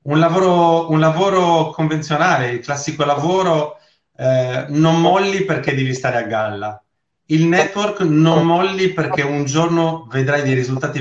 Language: Italian